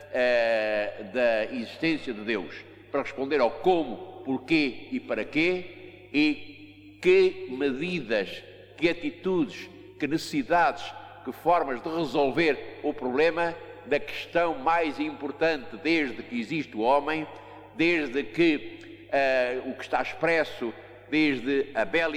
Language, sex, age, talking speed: Portuguese, male, 50-69, 115 wpm